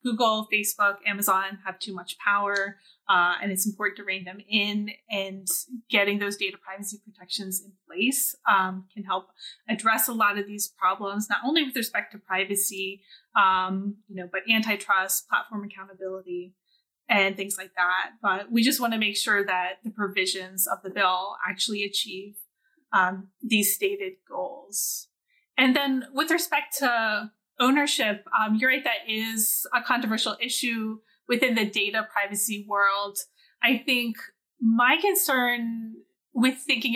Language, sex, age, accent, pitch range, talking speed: English, female, 20-39, American, 200-240 Hz, 150 wpm